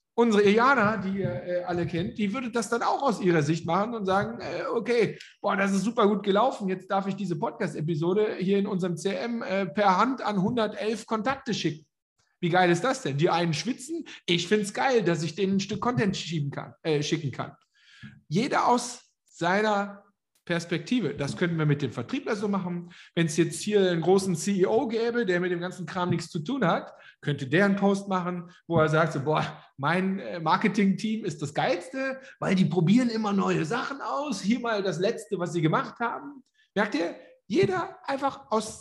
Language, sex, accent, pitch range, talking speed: German, male, German, 170-220 Hz, 195 wpm